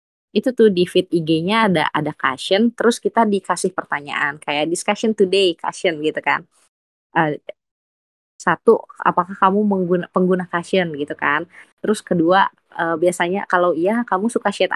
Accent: native